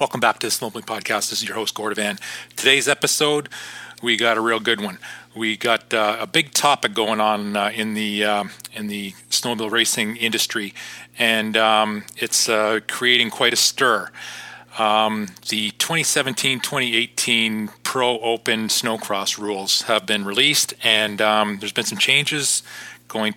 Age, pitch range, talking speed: 40-59, 105-120 Hz, 150 wpm